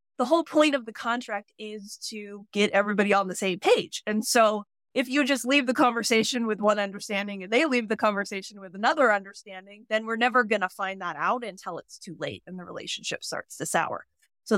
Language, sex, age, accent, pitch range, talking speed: English, female, 30-49, American, 195-245 Hz, 215 wpm